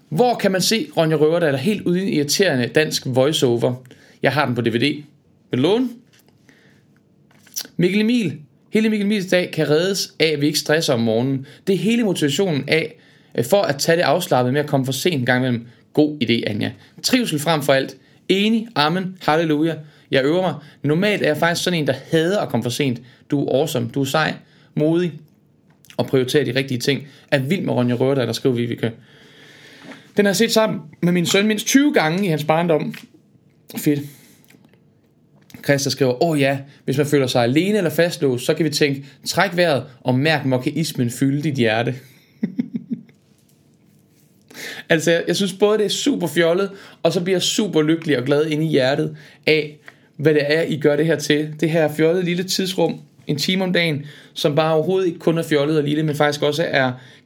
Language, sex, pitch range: Danish, male, 140-180 Hz